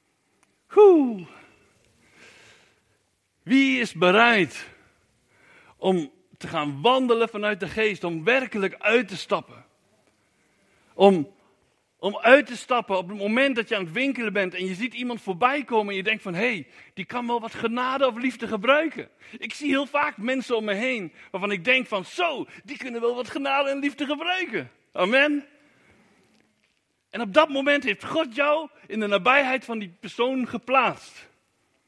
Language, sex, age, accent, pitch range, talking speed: Dutch, male, 60-79, Dutch, 205-275 Hz, 160 wpm